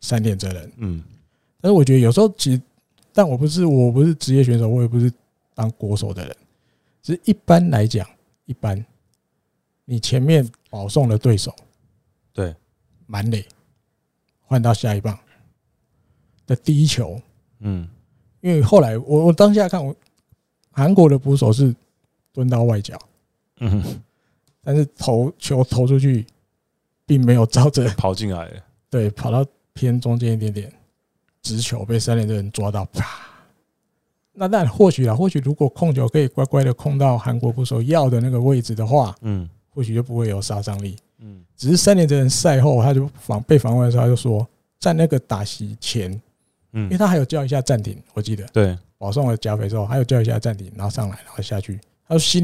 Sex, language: male, Chinese